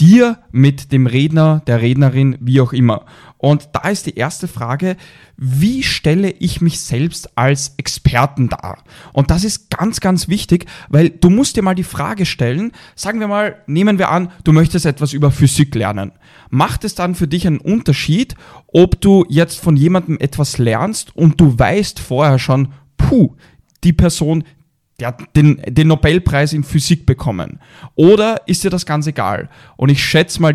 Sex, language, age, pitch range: male, German, 10-29, 130-170 Hz